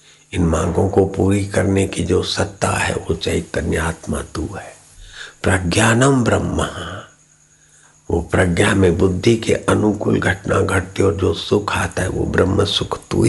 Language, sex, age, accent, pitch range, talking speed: Hindi, male, 60-79, native, 95-130 Hz, 145 wpm